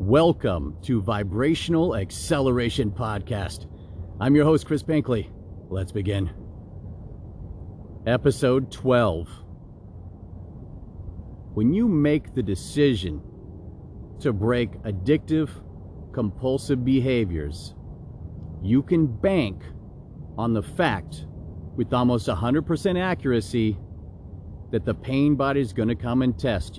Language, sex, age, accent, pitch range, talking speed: English, male, 40-59, American, 95-130 Hz, 100 wpm